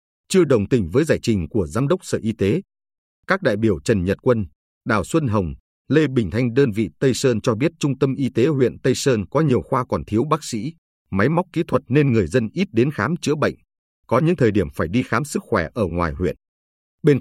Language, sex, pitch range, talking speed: Vietnamese, male, 105-140 Hz, 240 wpm